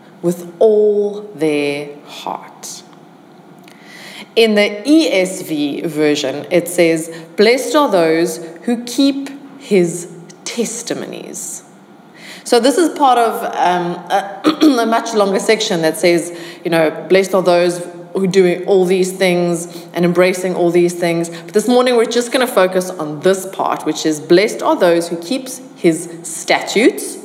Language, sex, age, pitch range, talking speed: English, female, 20-39, 170-230 Hz, 145 wpm